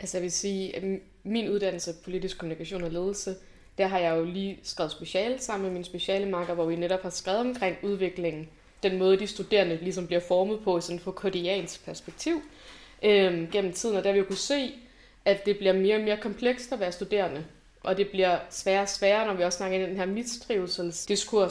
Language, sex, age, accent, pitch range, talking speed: Danish, female, 20-39, native, 180-210 Hz, 205 wpm